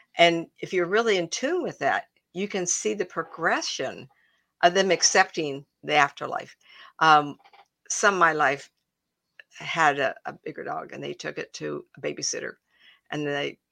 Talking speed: 160 wpm